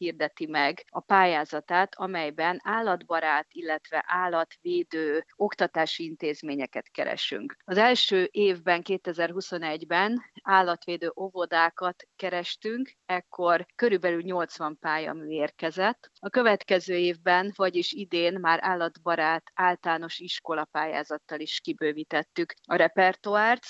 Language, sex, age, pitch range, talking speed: Hungarian, female, 30-49, 160-190 Hz, 95 wpm